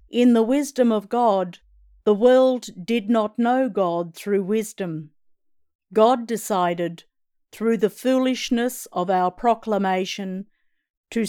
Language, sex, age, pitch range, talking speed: English, female, 50-69, 180-225 Hz, 115 wpm